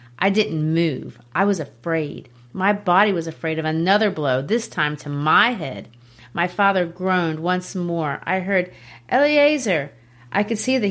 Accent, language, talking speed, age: American, English, 165 wpm, 40-59